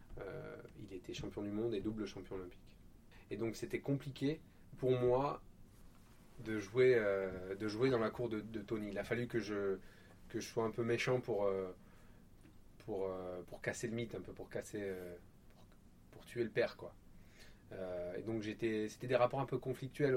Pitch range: 95-120 Hz